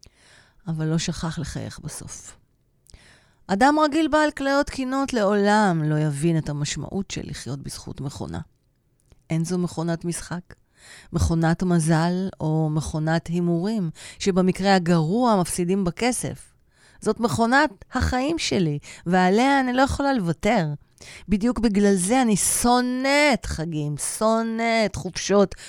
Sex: female